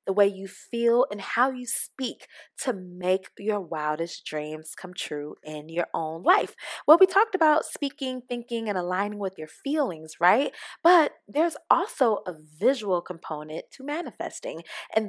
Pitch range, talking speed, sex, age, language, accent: 170-255 Hz, 160 wpm, female, 20-39, English, American